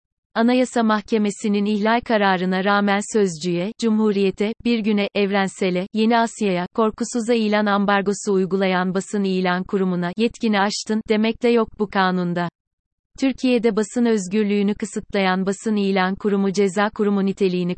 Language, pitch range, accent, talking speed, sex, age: Turkish, 195-220 Hz, native, 120 wpm, female, 30-49